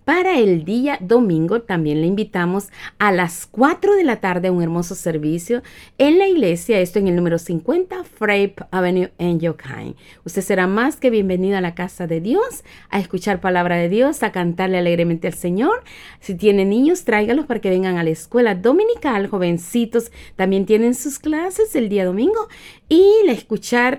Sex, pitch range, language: female, 180-255 Hz, Spanish